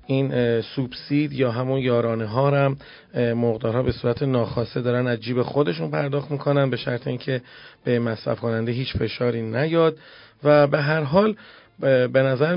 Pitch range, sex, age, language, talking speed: 125-155 Hz, male, 40-59, Persian, 150 wpm